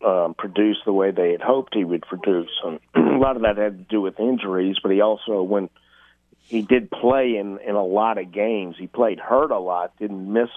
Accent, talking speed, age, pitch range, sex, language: American, 225 wpm, 50-69, 95-115 Hz, male, English